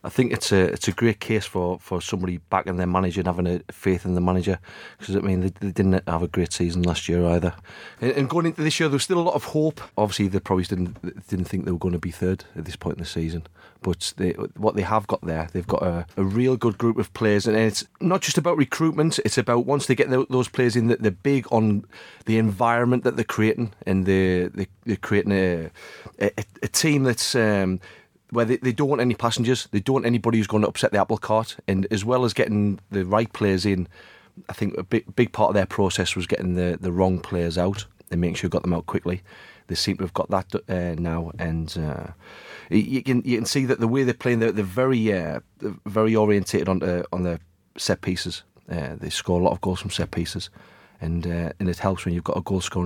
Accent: British